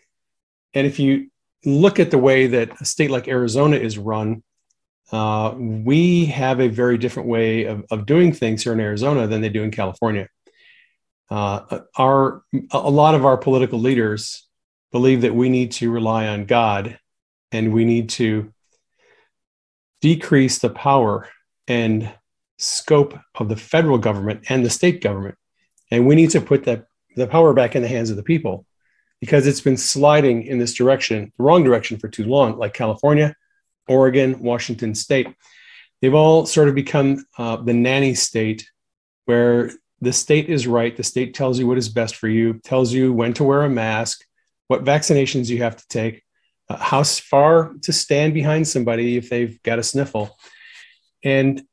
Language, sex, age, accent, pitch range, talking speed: English, male, 40-59, American, 115-140 Hz, 170 wpm